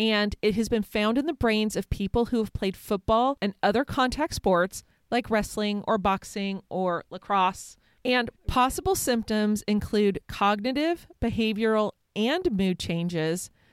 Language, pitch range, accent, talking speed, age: English, 185-230 Hz, American, 145 wpm, 30-49